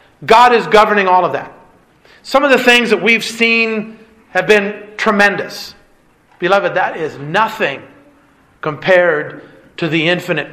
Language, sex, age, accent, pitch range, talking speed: English, male, 40-59, American, 185-230 Hz, 135 wpm